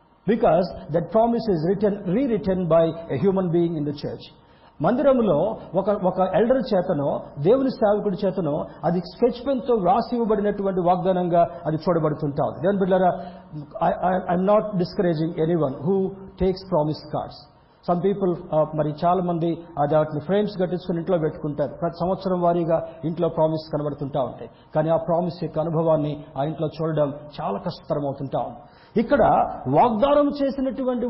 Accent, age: native, 50-69